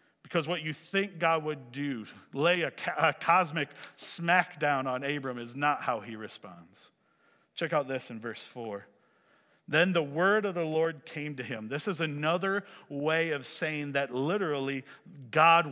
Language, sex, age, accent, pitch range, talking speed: English, male, 40-59, American, 140-180 Hz, 165 wpm